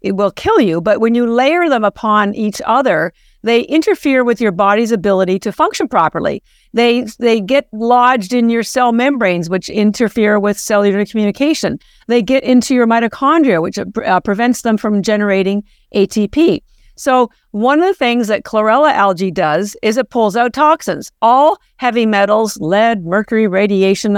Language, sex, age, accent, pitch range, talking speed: English, female, 50-69, American, 200-245 Hz, 165 wpm